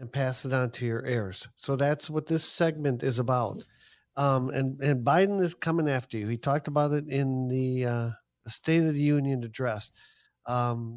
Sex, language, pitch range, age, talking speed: male, English, 125-150 Hz, 50-69, 195 wpm